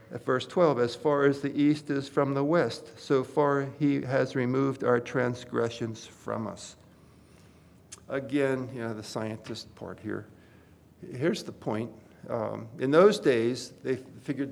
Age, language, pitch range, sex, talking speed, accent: 50-69, English, 120-155 Hz, male, 155 wpm, American